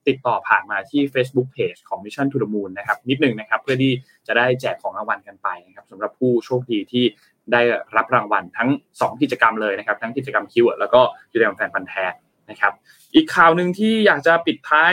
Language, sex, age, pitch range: Thai, male, 20-39, 125-160 Hz